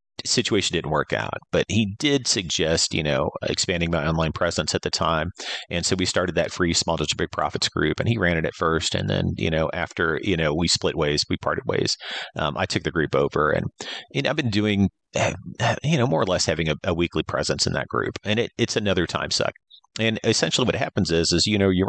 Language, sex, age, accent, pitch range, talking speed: English, male, 30-49, American, 80-100 Hz, 235 wpm